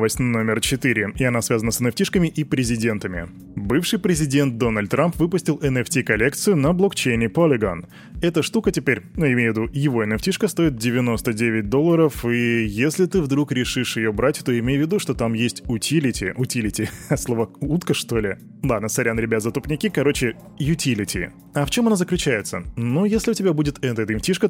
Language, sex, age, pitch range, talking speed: Russian, male, 20-39, 115-150 Hz, 170 wpm